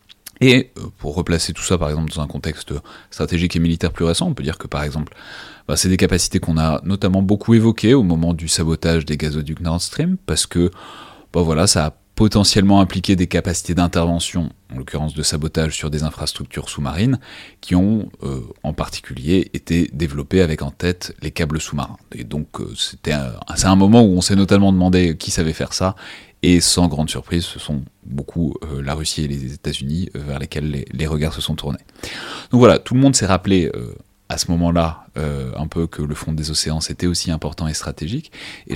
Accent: French